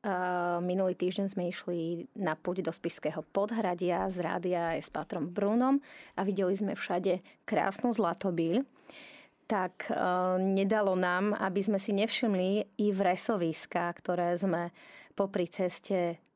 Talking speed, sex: 125 wpm, female